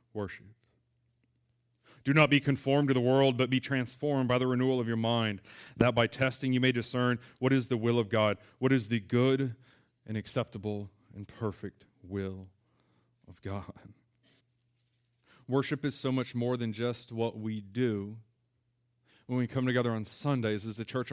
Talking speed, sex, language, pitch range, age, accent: 170 wpm, male, English, 110-125 Hz, 30-49, American